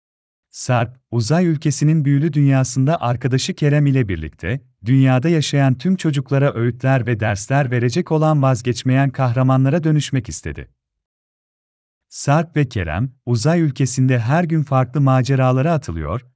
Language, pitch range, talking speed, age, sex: Turkish, 115-150 Hz, 115 wpm, 40-59, male